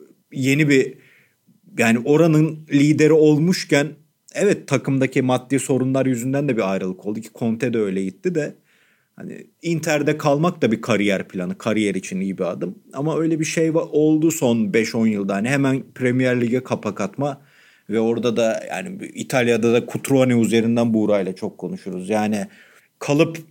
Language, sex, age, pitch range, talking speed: Turkish, male, 40-59, 120-150 Hz, 155 wpm